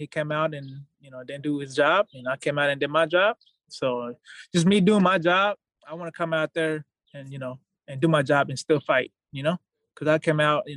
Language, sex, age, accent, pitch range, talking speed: English, male, 20-39, American, 130-160 Hz, 260 wpm